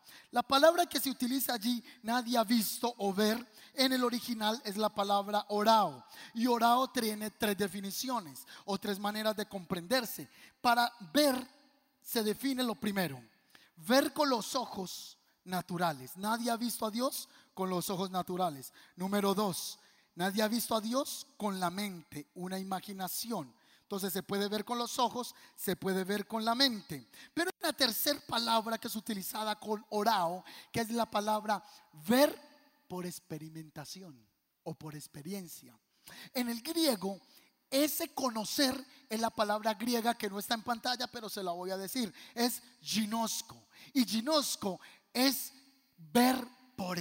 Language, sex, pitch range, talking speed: Spanish, male, 190-250 Hz, 150 wpm